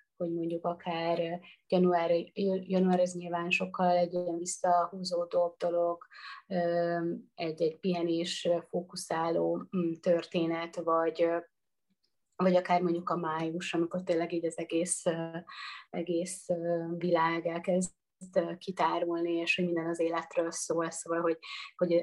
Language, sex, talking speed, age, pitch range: Hungarian, female, 110 wpm, 30-49, 170-190 Hz